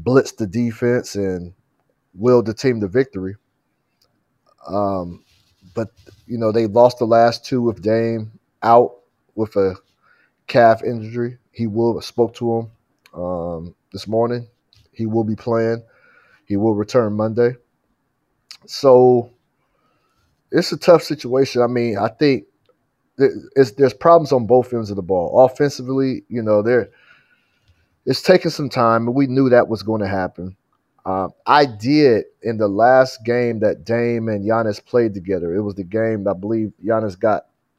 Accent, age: American, 30-49